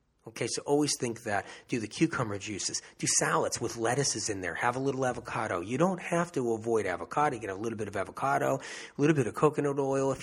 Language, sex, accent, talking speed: English, male, American, 225 wpm